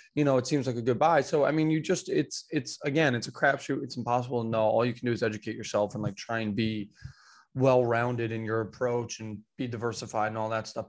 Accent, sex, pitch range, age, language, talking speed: American, male, 110-135 Hz, 20-39, English, 260 wpm